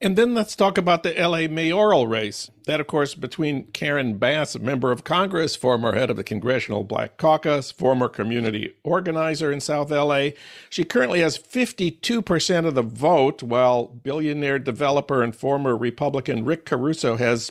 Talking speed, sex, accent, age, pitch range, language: 170 wpm, male, American, 50-69, 130-170 Hz, English